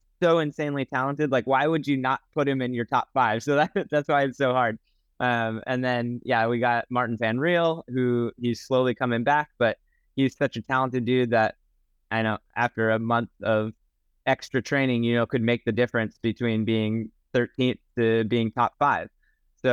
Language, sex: English, male